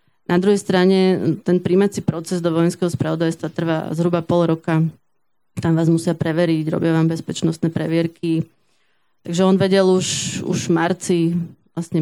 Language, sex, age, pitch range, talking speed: Slovak, female, 20-39, 165-180 Hz, 145 wpm